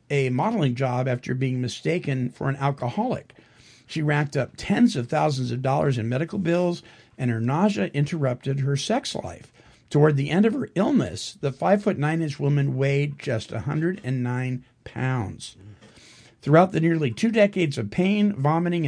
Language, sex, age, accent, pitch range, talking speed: English, male, 50-69, American, 130-190 Hz, 160 wpm